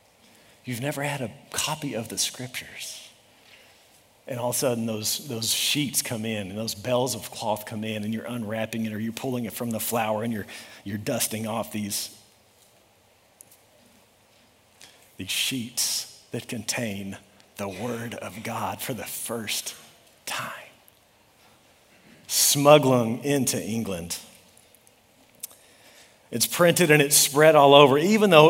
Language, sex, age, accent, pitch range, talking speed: English, male, 40-59, American, 110-145 Hz, 140 wpm